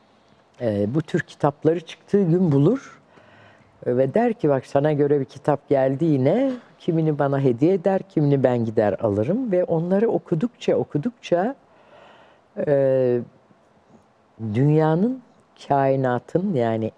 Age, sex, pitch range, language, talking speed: 50-69, female, 125-175 Hz, Turkish, 110 wpm